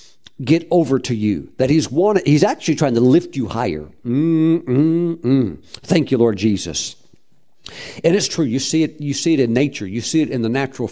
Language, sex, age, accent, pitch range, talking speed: English, male, 50-69, American, 130-160 Hz, 210 wpm